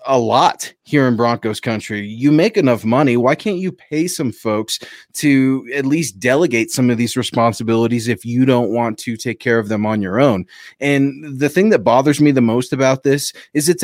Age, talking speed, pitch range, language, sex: 30-49, 210 wpm, 115-145 Hz, English, male